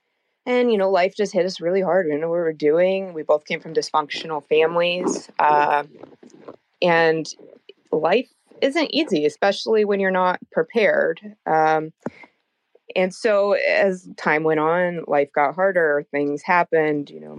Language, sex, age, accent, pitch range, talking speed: English, female, 20-39, American, 150-190 Hz, 160 wpm